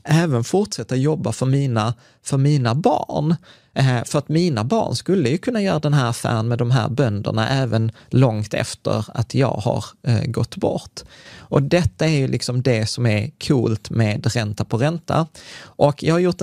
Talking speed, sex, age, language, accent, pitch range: 185 wpm, male, 30-49, Swedish, native, 110-140 Hz